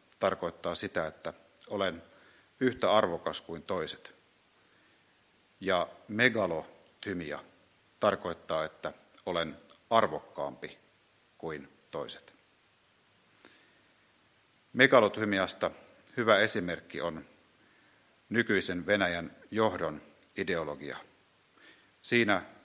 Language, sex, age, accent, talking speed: Finnish, male, 50-69, native, 65 wpm